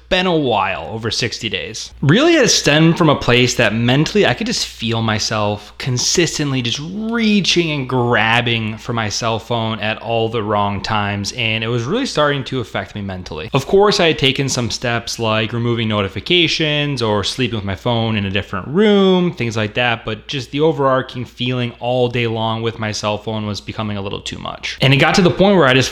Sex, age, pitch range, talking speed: male, 20-39, 110-145 Hz, 210 wpm